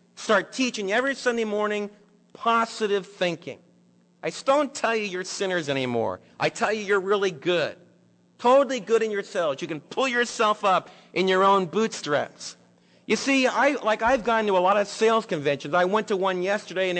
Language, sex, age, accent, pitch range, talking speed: English, male, 50-69, American, 170-240 Hz, 185 wpm